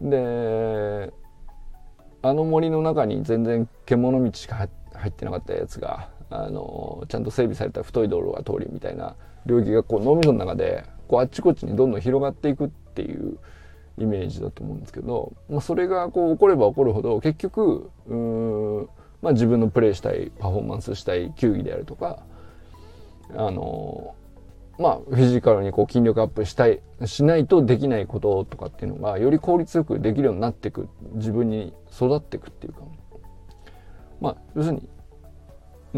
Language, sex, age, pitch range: Japanese, male, 20-39, 95-145 Hz